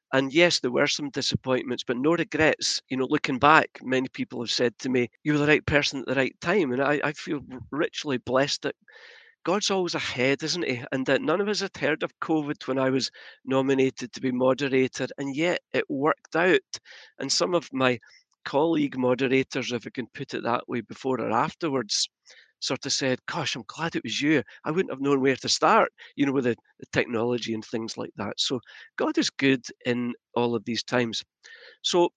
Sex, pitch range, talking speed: male, 130-170 Hz, 210 wpm